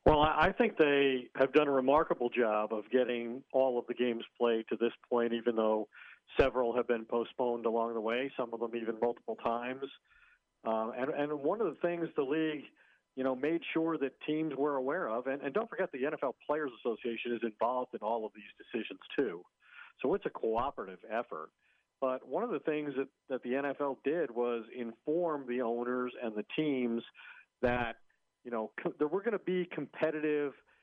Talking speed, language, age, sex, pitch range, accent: 195 wpm, English, 50-69, male, 120-150 Hz, American